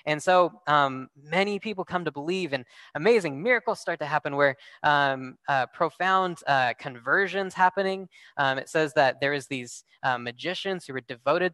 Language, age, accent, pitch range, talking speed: English, 10-29, American, 140-190 Hz, 170 wpm